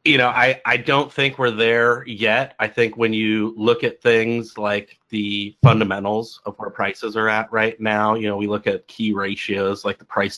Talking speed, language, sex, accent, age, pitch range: 210 wpm, English, male, American, 30-49, 100-115 Hz